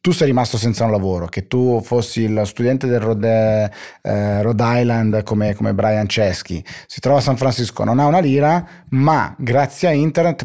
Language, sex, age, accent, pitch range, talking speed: Italian, male, 30-49, native, 100-135 Hz, 180 wpm